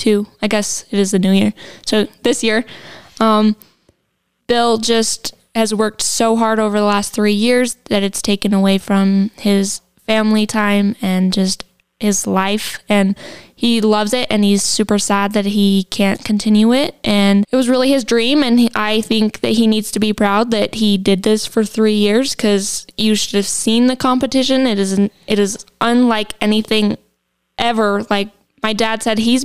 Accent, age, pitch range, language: American, 10-29, 205-235 Hz, English